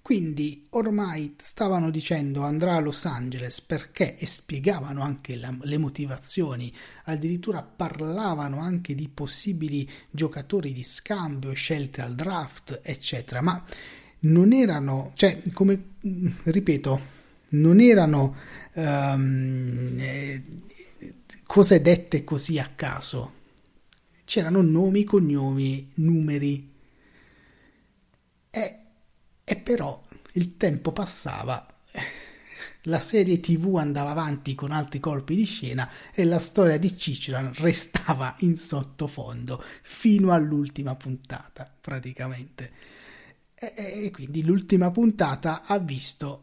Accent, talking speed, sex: native, 105 wpm, male